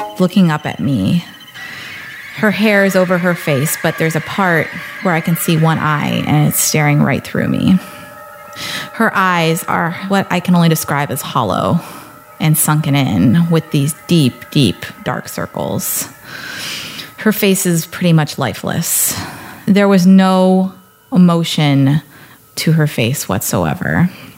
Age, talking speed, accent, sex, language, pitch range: 20-39, 145 wpm, American, female, English, 155-195 Hz